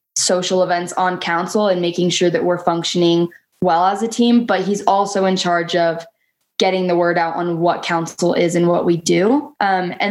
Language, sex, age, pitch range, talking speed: English, female, 10-29, 175-200 Hz, 200 wpm